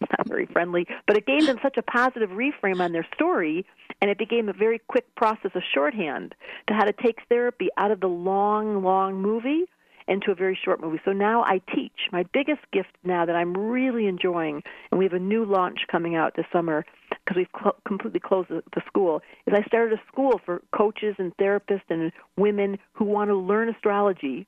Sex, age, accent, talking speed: female, 50-69, American, 205 wpm